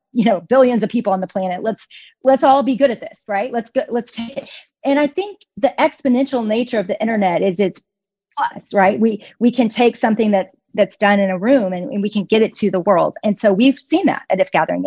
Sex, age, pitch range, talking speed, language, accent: female, 40-59, 185-235 Hz, 250 wpm, English, American